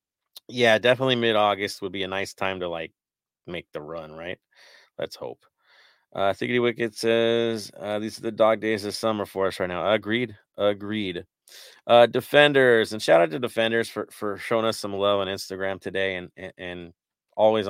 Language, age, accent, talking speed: English, 30-49, American, 185 wpm